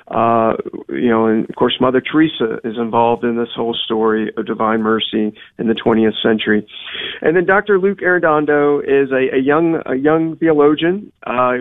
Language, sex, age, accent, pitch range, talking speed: English, male, 40-59, American, 125-150 Hz, 175 wpm